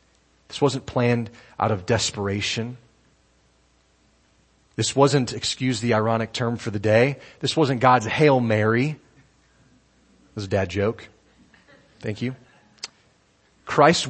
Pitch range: 95-130 Hz